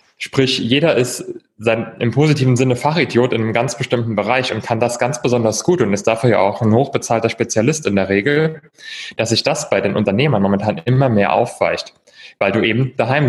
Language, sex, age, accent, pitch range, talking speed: German, male, 30-49, German, 110-135 Hz, 195 wpm